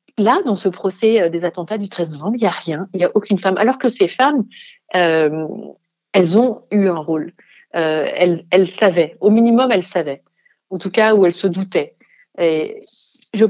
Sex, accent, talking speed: female, French, 195 wpm